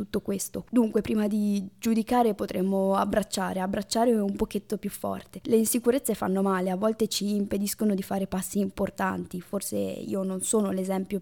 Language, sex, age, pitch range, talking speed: Italian, female, 20-39, 190-210 Hz, 160 wpm